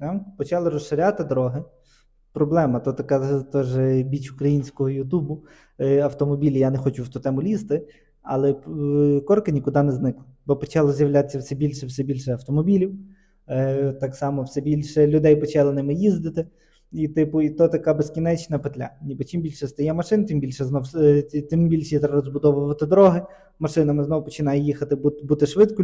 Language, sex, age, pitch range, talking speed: Ukrainian, male, 20-39, 140-160 Hz, 150 wpm